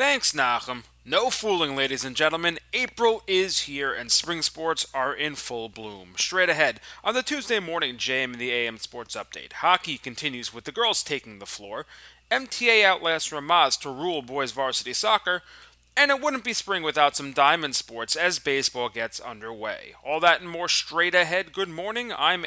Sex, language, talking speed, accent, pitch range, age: male, English, 180 wpm, American, 125-190 Hz, 30-49